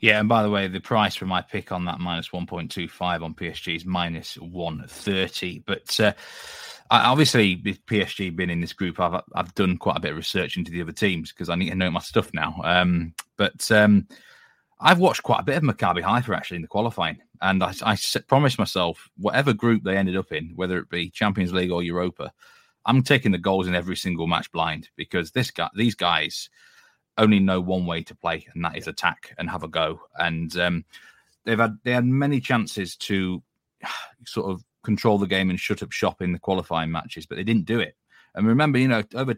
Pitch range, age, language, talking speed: 85-105 Hz, 20-39, English, 220 wpm